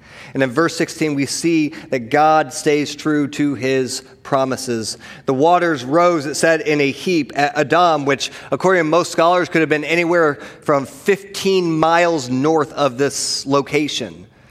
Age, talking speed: 30-49, 160 wpm